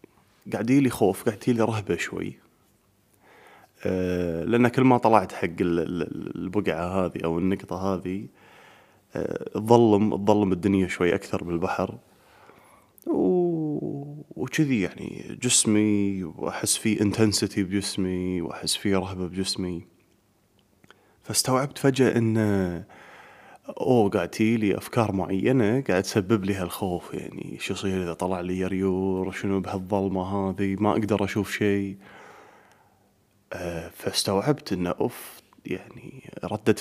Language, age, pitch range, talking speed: Arabic, 20-39, 95-125 Hz, 110 wpm